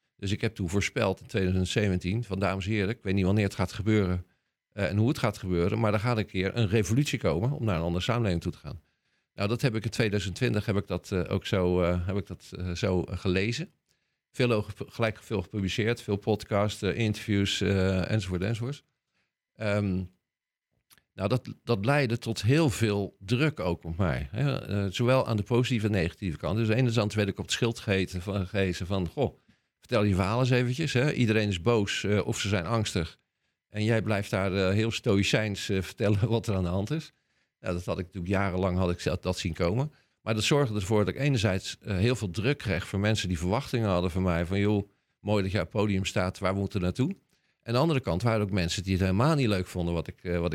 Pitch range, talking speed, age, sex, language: 95-115 Hz, 230 wpm, 50-69, male, Dutch